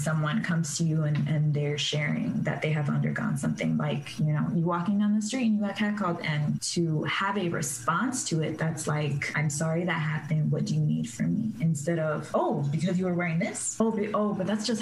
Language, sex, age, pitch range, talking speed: English, female, 20-39, 155-200 Hz, 230 wpm